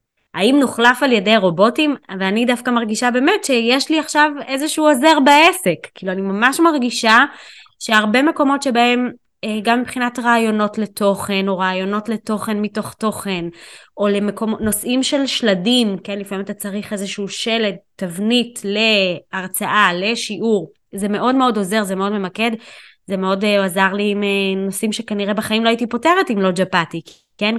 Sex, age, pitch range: female, 20-39, 195-250 Hz